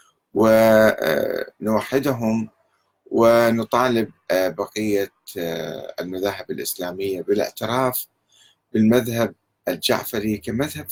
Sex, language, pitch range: male, Arabic, 100-130 Hz